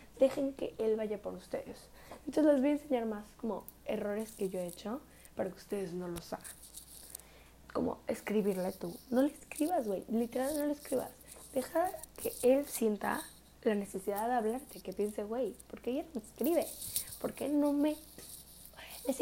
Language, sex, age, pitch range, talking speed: German, female, 10-29, 195-250 Hz, 170 wpm